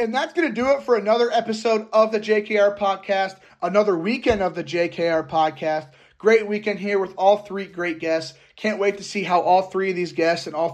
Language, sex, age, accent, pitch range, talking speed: English, male, 30-49, American, 150-180 Hz, 220 wpm